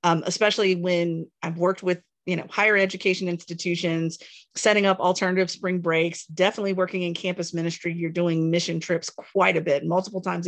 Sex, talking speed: female, 170 wpm